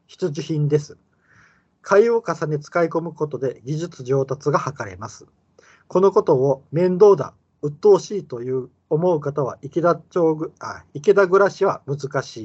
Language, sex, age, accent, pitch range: Japanese, male, 40-59, native, 130-170 Hz